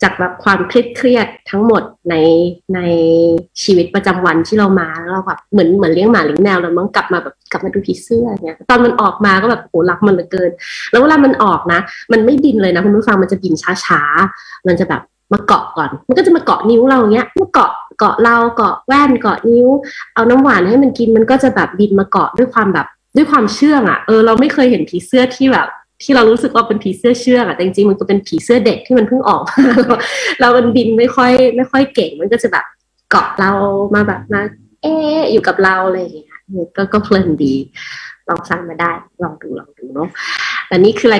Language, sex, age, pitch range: Thai, female, 20-39, 180-240 Hz